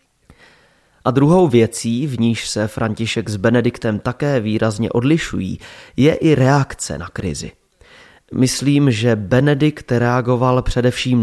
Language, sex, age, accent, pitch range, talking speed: Czech, male, 30-49, native, 110-145 Hz, 120 wpm